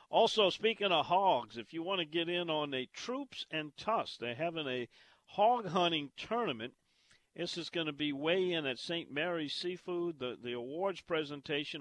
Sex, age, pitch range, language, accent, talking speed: male, 50-69, 125-170 Hz, English, American, 185 wpm